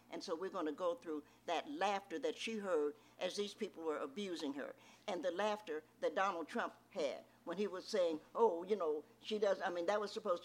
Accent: American